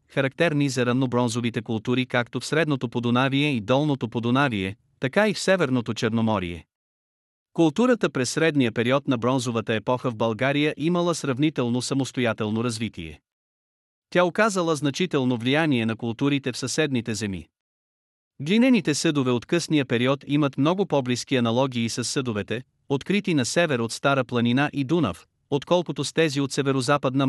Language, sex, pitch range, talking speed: Bulgarian, male, 120-155 Hz, 140 wpm